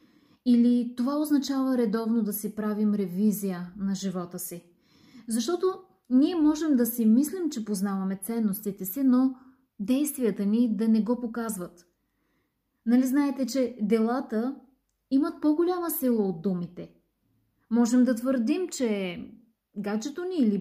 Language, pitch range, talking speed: Bulgarian, 210-265 Hz, 130 wpm